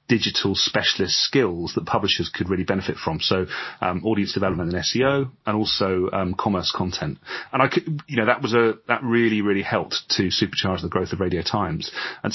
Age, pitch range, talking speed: 30-49, 95-115 Hz, 195 wpm